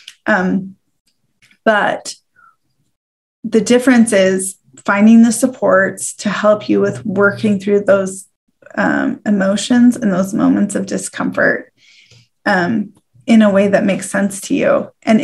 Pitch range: 195-220 Hz